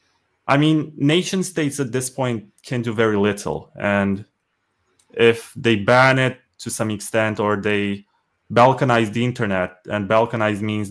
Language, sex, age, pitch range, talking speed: English, male, 20-39, 100-120 Hz, 145 wpm